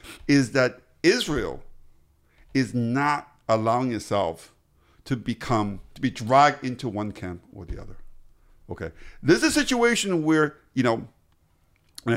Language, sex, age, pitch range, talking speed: English, male, 50-69, 110-170 Hz, 135 wpm